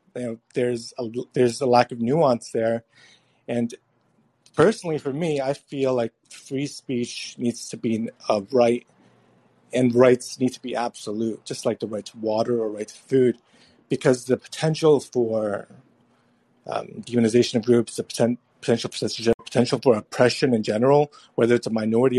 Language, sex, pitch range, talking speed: English, male, 115-130 Hz, 150 wpm